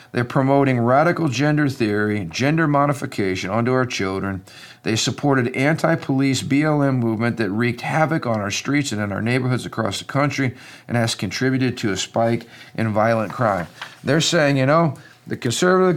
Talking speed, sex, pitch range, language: 160 wpm, male, 110-140 Hz, English